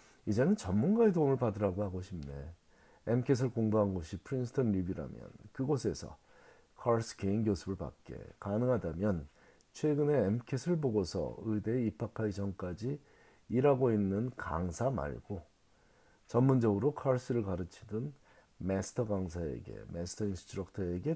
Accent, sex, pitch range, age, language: native, male, 95-130 Hz, 40-59, Korean